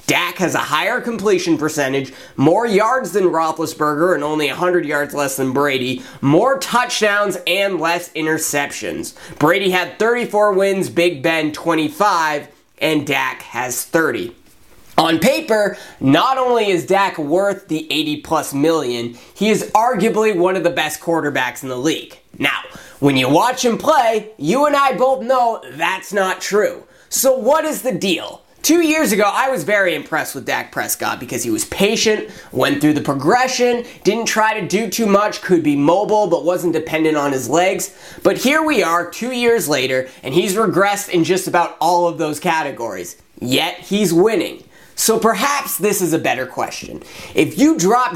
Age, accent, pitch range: 20-39, American, 150-220 Hz